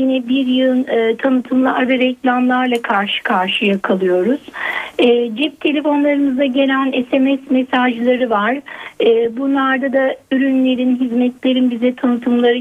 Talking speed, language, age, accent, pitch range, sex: 115 wpm, Turkish, 60-79, native, 250-315 Hz, female